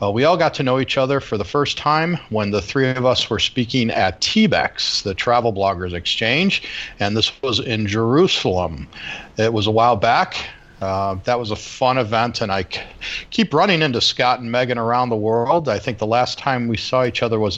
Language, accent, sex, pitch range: English, American, male, 105-130 Hz